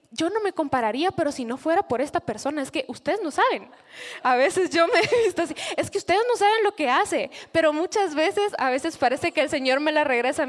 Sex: female